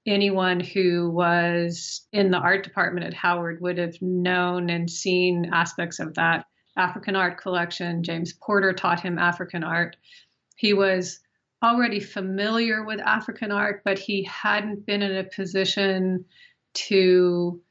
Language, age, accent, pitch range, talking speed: English, 40-59, American, 175-205 Hz, 140 wpm